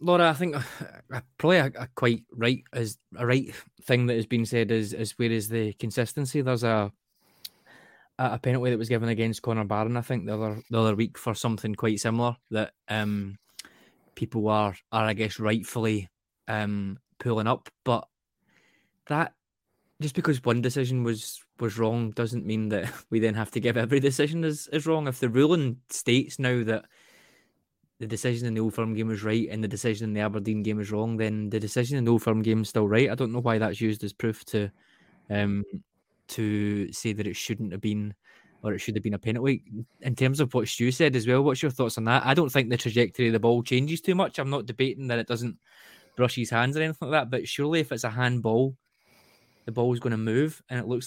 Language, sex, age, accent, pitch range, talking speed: English, male, 20-39, British, 110-125 Hz, 220 wpm